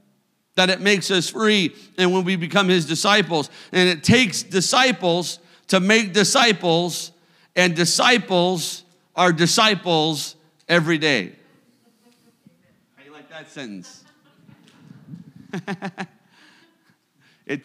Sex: male